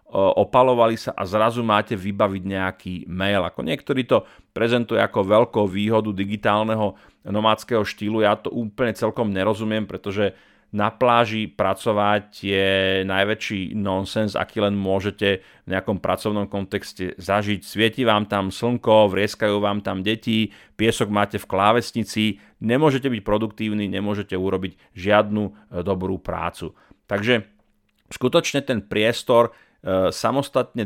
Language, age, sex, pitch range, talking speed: Slovak, 30-49, male, 100-120 Hz, 125 wpm